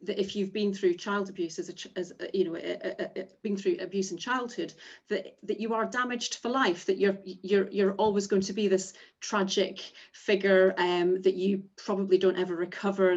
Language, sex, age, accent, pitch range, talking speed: English, female, 30-49, British, 185-210 Hz, 195 wpm